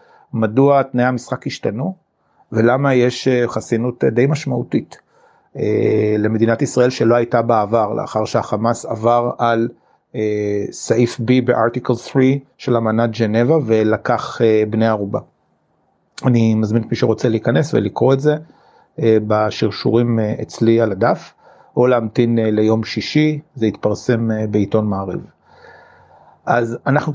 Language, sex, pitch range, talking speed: Hebrew, male, 115-125 Hz, 115 wpm